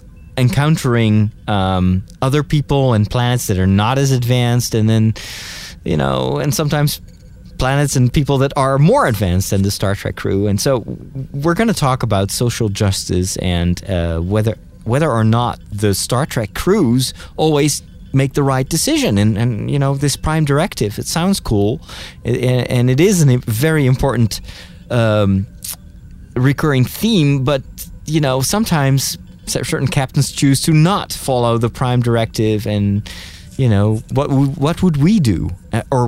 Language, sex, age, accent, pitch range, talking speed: English, male, 30-49, American, 100-140 Hz, 155 wpm